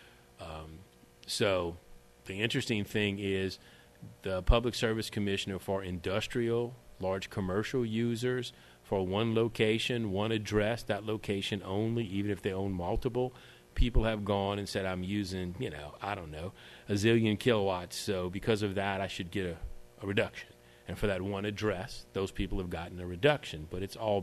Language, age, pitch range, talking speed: English, 40-59, 90-105 Hz, 165 wpm